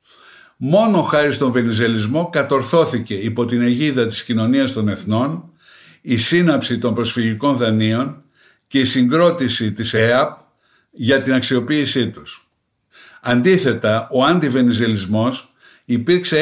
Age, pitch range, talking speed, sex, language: 60-79, 115-155 Hz, 110 wpm, male, Greek